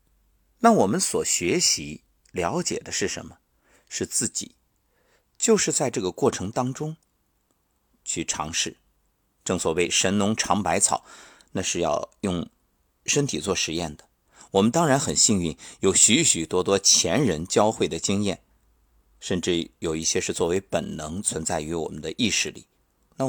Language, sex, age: Chinese, male, 50-69